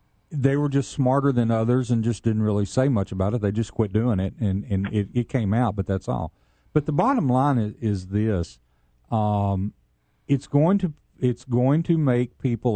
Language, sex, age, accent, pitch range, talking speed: English, male, 50-69, American, 105-130 Hz, 205 wpm